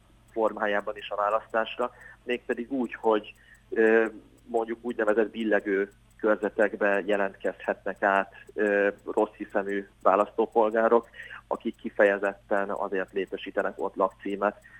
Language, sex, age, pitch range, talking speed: Hungarian, male, 30-49, 100-115 Hz, 90 wpm